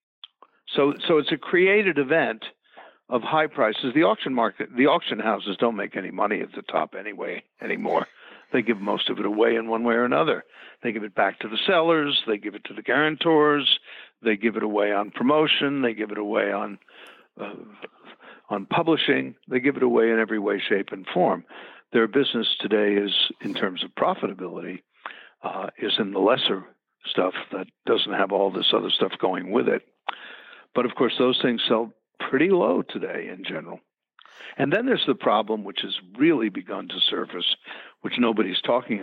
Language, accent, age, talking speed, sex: English, American, 60-79, 185 wpm, male